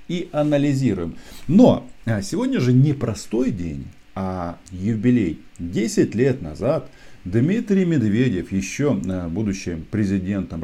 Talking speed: 100 wpm